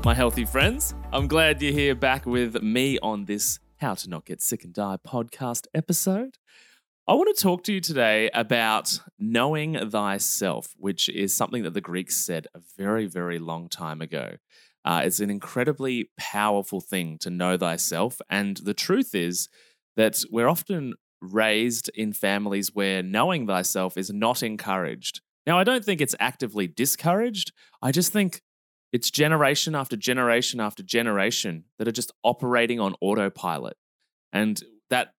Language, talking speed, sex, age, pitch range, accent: English, 160 wpm, male, 20-39, 100-125 Hz, Australian